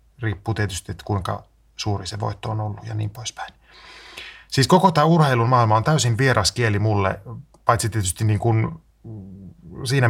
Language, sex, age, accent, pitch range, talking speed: Finnish, male, 30-49, native, 95-120 Hz, 160 wpm